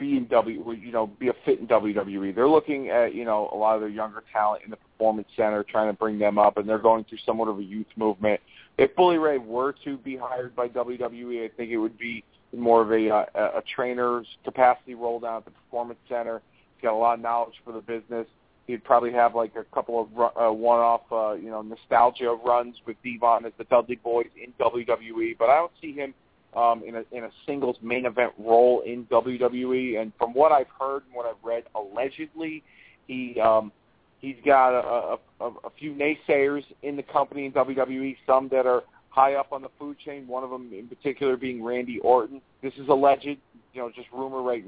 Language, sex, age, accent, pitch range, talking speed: English, male, 30-49, American, 115-135 Hz, 220 wpm